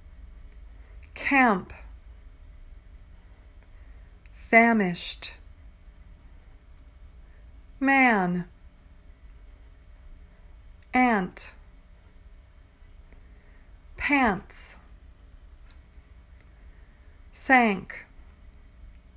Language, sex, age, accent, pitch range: English, female, 50-69, American, 70-90 Hz